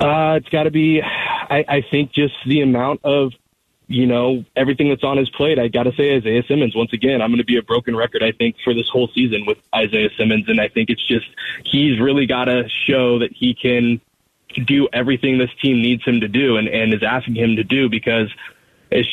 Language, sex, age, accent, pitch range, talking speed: English, male, 20-39, American, 120-135 Hz, 215 wpm